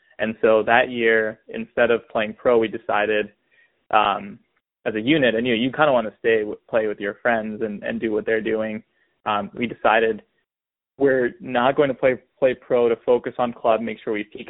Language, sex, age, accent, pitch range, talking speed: English, male, 20-39, American, 110-130 Hz, 215 wpm